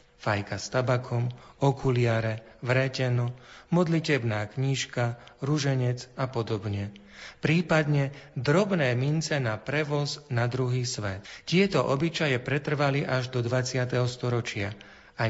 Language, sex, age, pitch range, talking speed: Slovak, male, 40-59, 115-145 Hz, 100 wpm